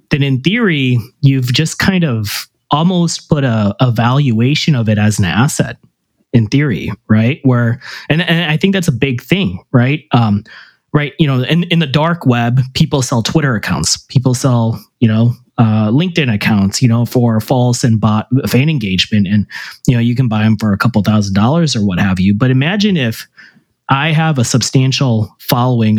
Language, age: English, 30-49